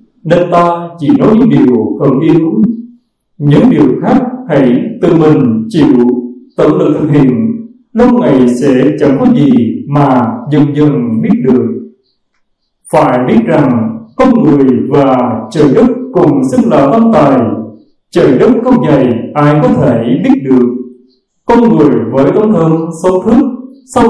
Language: Vietnamese